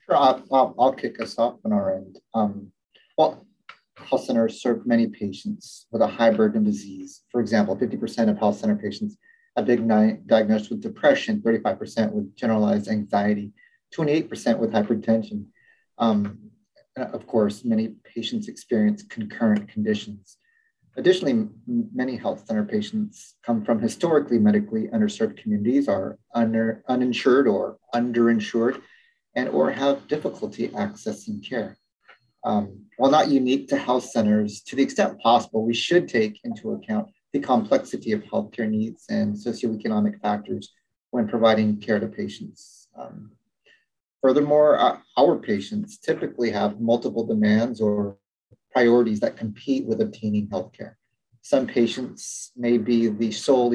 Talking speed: 135 wpm